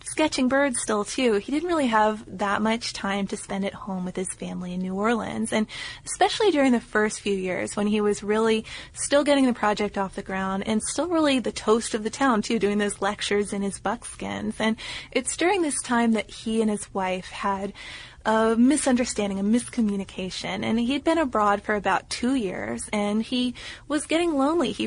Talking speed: 200 wpm